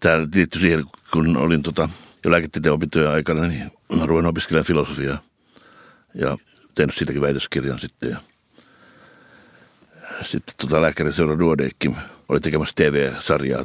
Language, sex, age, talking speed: Finnish, male, 60-79, 100 wpm